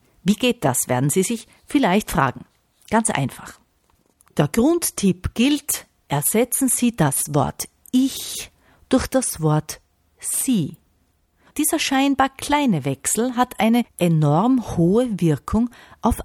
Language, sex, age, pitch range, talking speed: German, female, 50-69, 160-250 Hz, 120 wpm